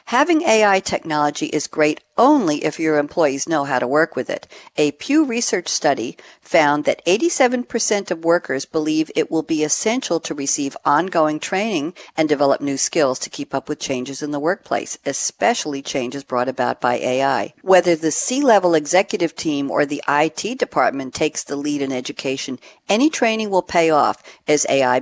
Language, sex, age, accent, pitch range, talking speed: English, female, 50-69, American, 140-195 Hz, 175 wpm